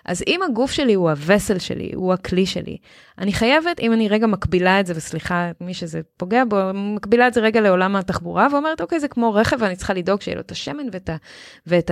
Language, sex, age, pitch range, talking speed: Hebrew, female, 20-39, 180-250 Hz, 220 wpm